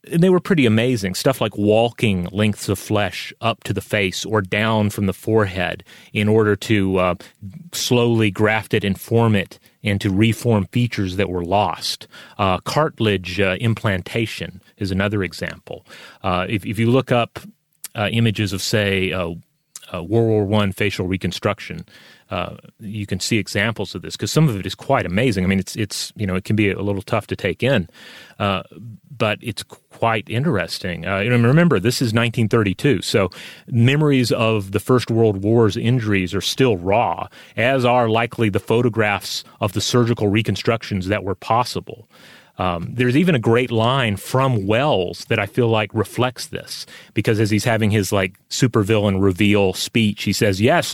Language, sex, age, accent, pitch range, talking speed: English, male, 30-49, American, 105-145 Hz, 175 wpm